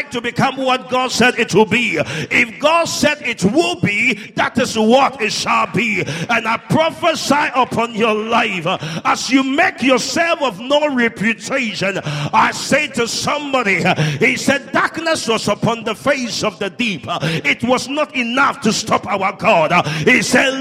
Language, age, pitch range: English, 50-69, 215-280 Hz